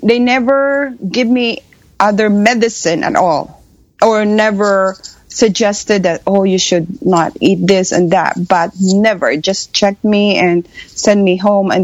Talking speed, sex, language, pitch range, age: 150 wpm, female, English, 175-215 Hz, 30-49